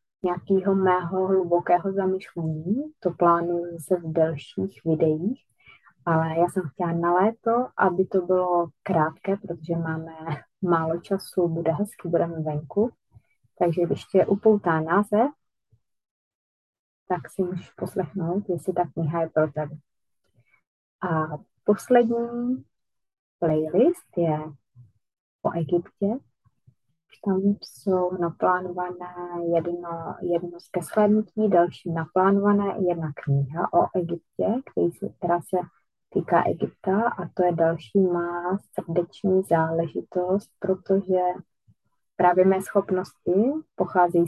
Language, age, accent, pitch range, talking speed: Czech, 30-49, native, 165-195 Hz, 105 wpm